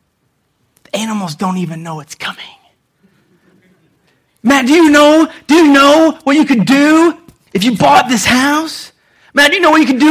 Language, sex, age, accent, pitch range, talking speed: English, male, 30-49, American, 195-285 Hz, 180 wpm